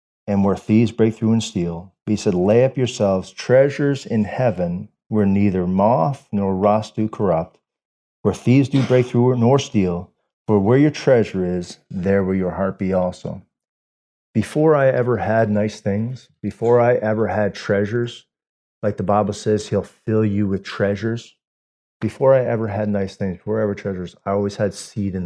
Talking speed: 175 wpm